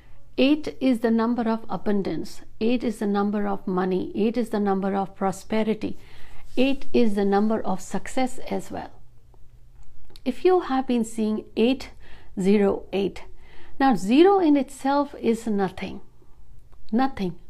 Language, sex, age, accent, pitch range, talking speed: Hindi, female, 60-79, native, 200-255 Hz, 140 wpm